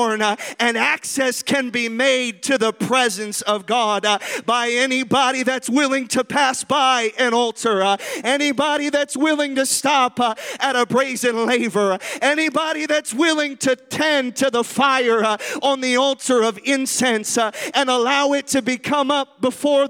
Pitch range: 215-275 Hz